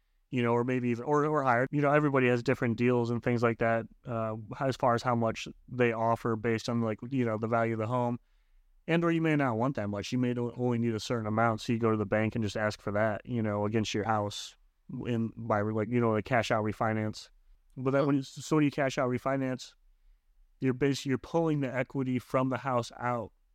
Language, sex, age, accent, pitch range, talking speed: English, male, 30-49, American, 110-130 Hz, 240 wpm